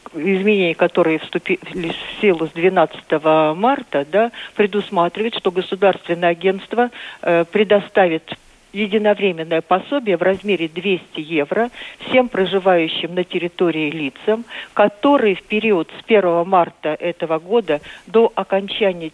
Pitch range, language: 165-210 Hz, Russian